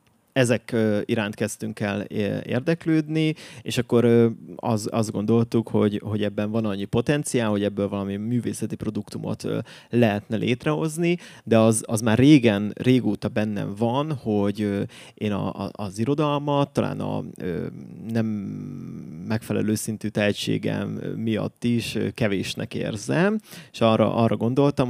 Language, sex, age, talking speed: Hungarian, male, 20-39, 125 wpm